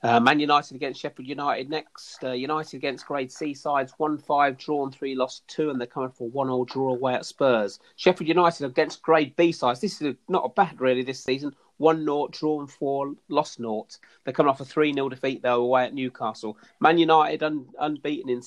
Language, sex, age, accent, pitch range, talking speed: English, male, 30-49, British, 120-145 Hz, 220 wpm